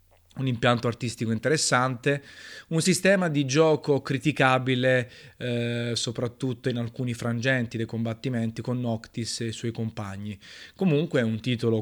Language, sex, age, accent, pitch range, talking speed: Italian, male, 20-39, native, 115-135 Hz, 130 wpm